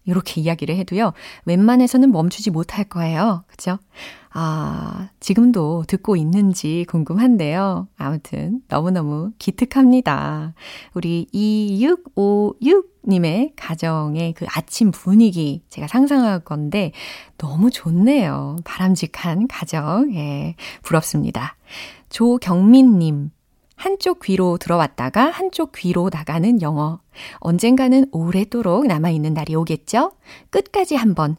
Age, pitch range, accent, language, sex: 30-49, 165-255 Hz, native, Korean, female